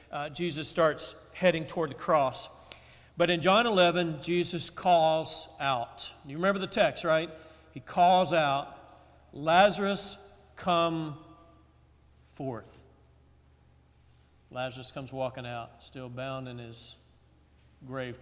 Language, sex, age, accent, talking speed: English, male, 50-69, American, 110 wpm